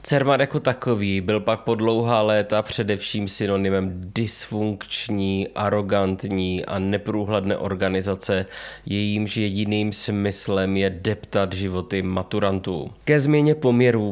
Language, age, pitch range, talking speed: Czech, 20-39, 100-115 Hz, 105 wpm